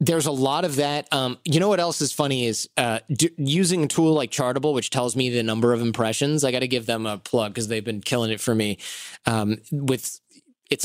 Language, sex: English, male